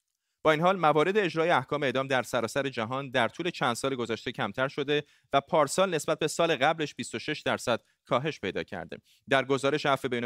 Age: 30-49